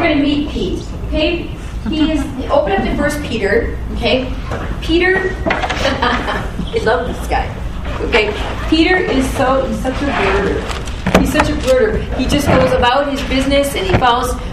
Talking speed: 155 wpm